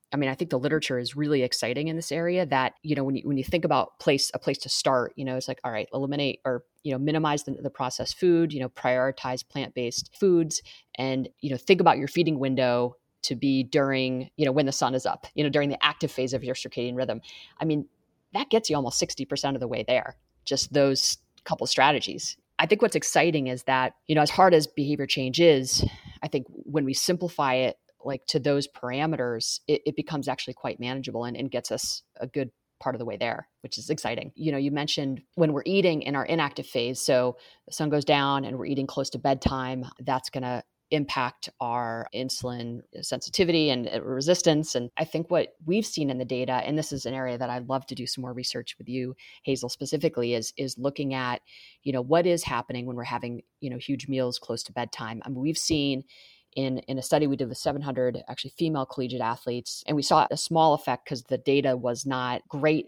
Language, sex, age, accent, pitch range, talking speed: English, female, 30-49, American, 125-150 Hz, 225 wpm